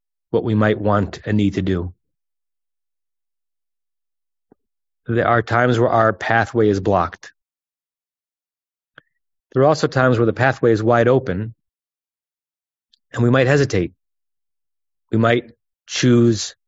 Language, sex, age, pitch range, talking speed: English, male, 30-49, 90-120 Hz, 120 wpm